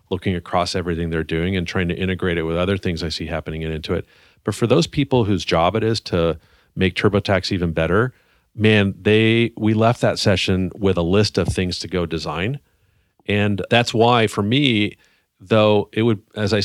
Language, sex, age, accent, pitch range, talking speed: English, male, 40-59, American, 90-110 Hz, 200 wpm